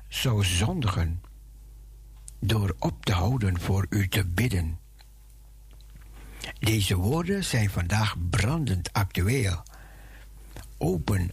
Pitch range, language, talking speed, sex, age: 95-130 Hz, Dutch, 90 wpm, male, 60-79